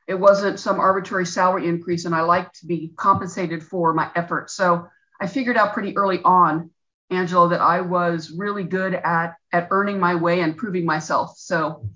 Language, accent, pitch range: English, American, 165-195 Hz